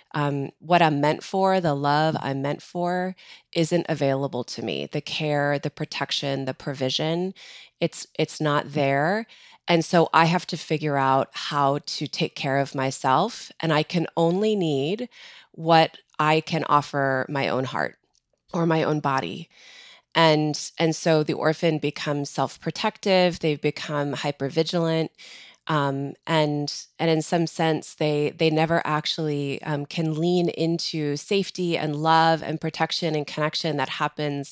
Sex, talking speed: female, 150 wpm